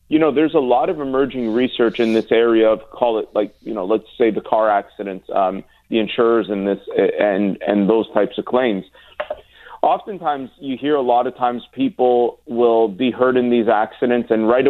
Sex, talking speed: male, 200 wpm